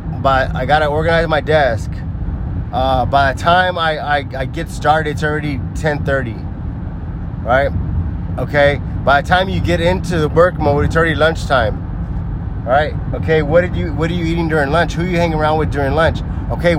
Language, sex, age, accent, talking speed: English, male, 20-39, American, 185 wpm